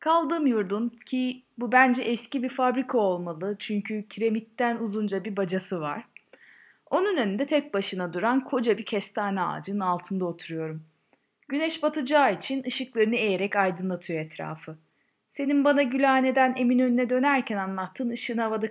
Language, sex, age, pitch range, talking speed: Turkish, female, 30-49, 185-255 Hz, 135 wpm